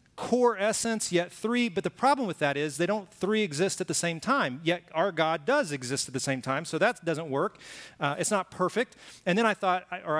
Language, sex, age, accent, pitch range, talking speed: English, male, 30-49, American, 135-195 Hz, 235 wpm